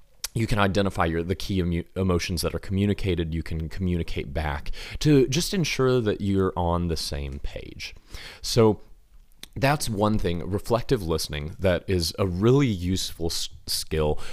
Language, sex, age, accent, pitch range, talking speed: English, male, 30-49, American, 80-95 Hz, 140 wpm